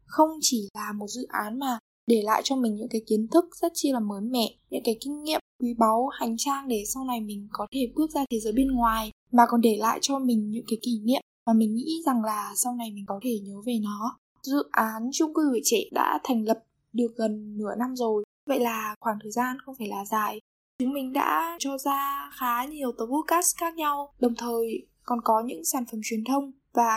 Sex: female